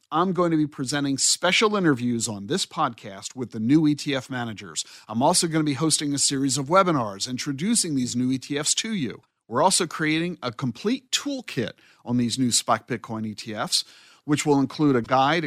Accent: American